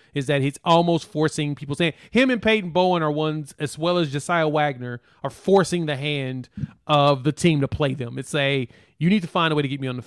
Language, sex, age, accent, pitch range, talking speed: English, male, 30-49, American, 135-165 Hz, 245 wpm